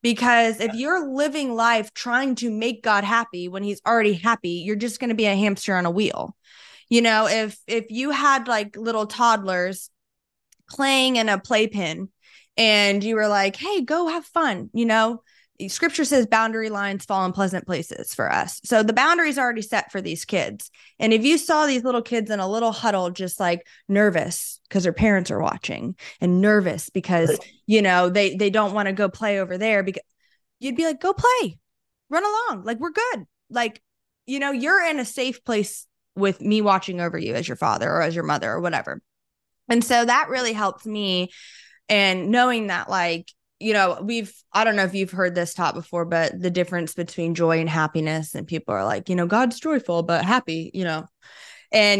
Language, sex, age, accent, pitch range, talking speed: English, female, 20-39, American, 180-235 Hz, 200 wpm